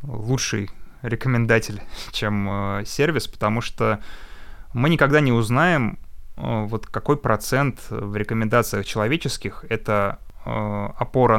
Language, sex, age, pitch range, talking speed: Russian, male, 20-39, 105-125 Hz, 95 wpm